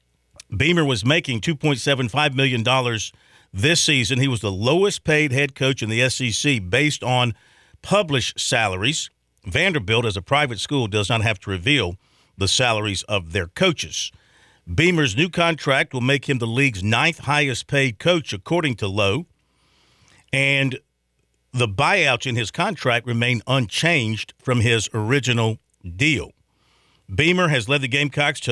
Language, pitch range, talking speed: English, 115-145 Hz, 140 wpm